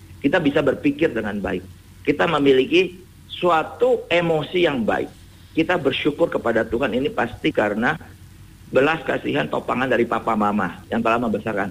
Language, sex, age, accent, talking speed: English, male, 50-69, Indonesian, 140 wpm